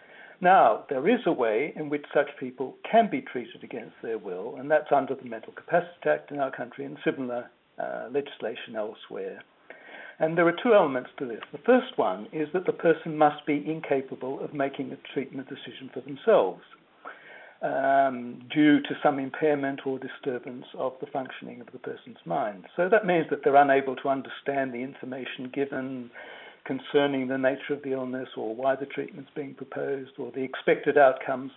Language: English